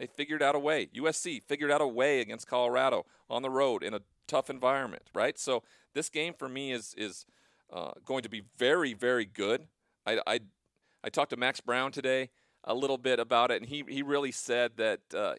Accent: American